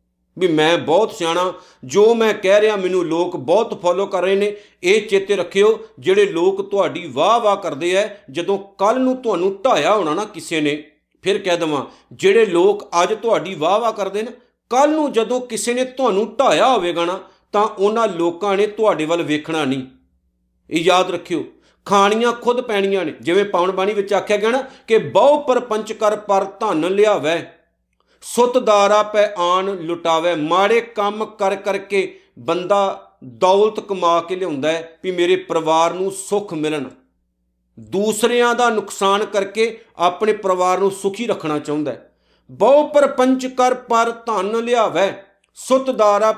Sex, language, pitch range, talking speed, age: male, Punjabi, 175-230 Hz, 140 wpm, 50-69